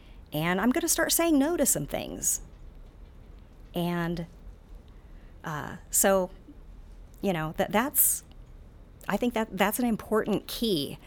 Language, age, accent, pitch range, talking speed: English, 40-59, American, 150-200 Hz, 130 wpm